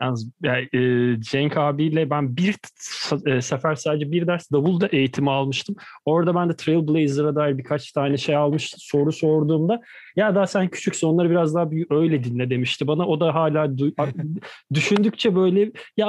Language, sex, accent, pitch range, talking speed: Turkish, male, native, 140-175 Hz, 155 wpm